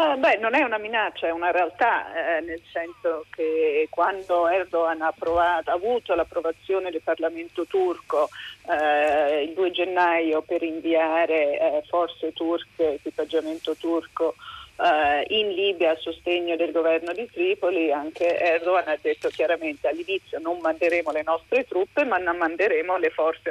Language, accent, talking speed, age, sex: Italian, native, 145 wpm, 30-49, female